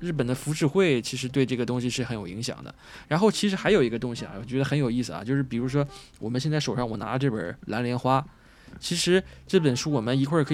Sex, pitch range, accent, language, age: male, 125-155 Hz, native, Chinese, 20-39